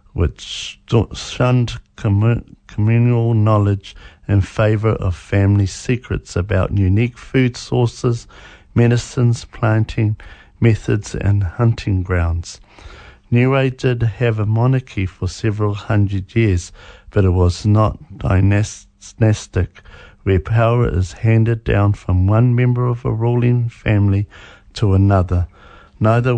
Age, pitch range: 50-69, 95-120 Hz